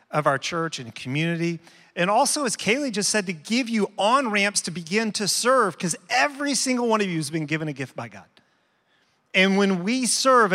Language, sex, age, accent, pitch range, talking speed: English, male, 40-59, American, 150-195 Hz, 205 wpm